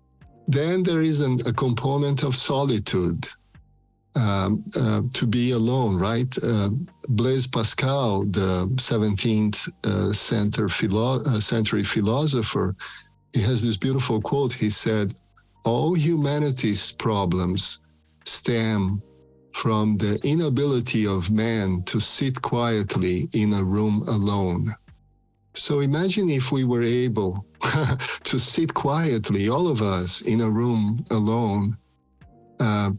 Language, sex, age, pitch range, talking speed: English, male, 50-69, 100-135 Hz, 120 wpm